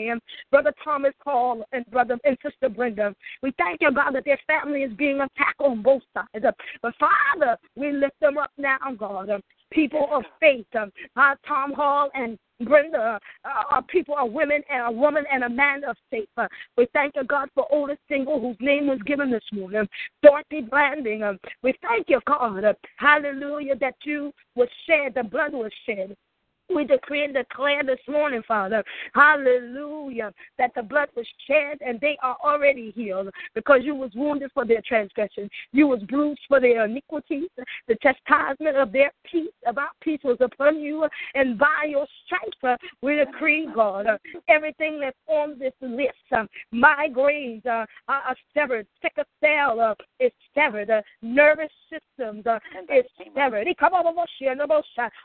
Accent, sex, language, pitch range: American, female, English, 245-300 Hz